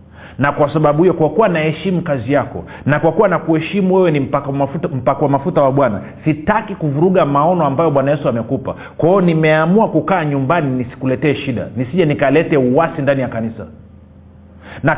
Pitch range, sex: 140-190 Hz, male